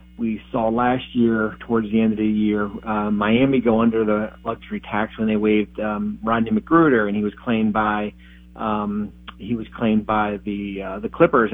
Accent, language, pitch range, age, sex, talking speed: American, English, 105-120 Hz, 40-59, male, 190 wpm